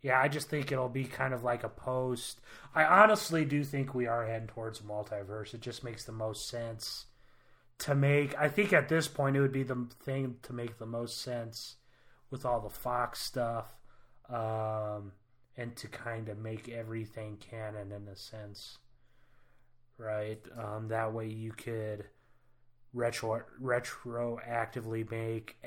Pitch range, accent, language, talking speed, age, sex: 115-135 Hz, American, English, 160 wpm, 30-49, male